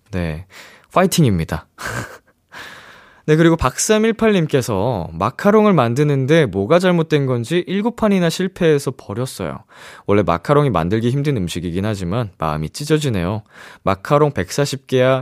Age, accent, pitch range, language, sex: 20-39, native, 95-155 Hz, Korean, male